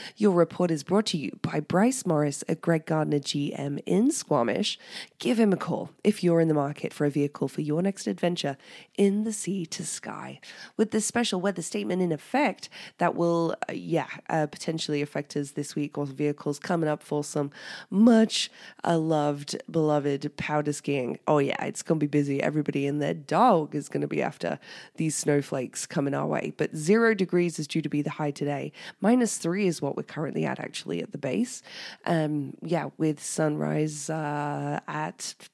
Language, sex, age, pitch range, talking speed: English, female, 20-39, 150-195 Hz, 190 wpm